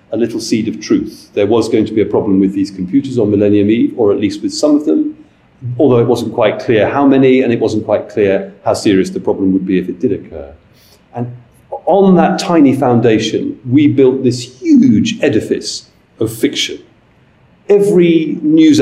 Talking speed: 195 wpm